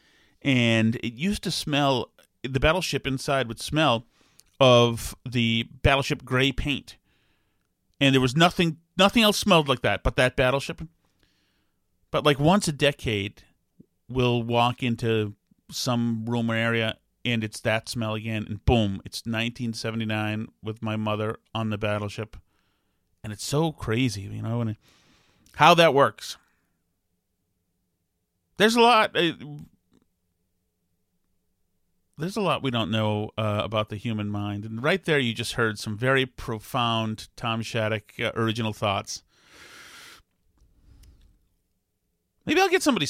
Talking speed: 130 wpm